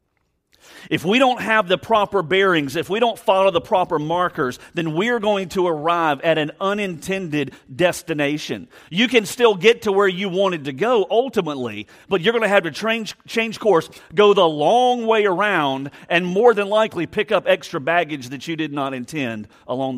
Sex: male